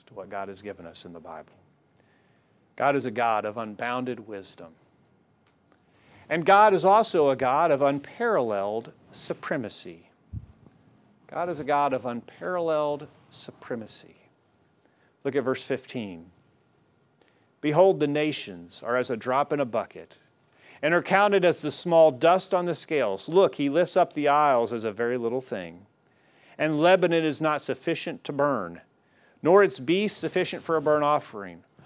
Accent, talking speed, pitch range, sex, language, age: American, 155 wpm, 125-175 Hz, male, English, 40-59